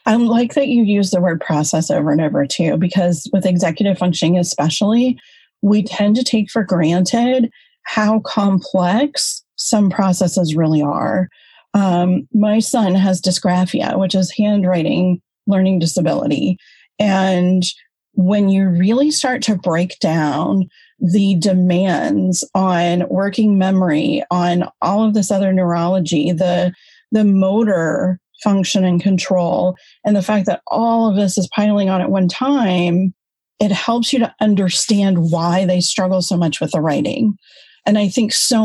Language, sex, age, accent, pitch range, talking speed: English, female, 30-49, American, 180-210 Hz, 145 wpm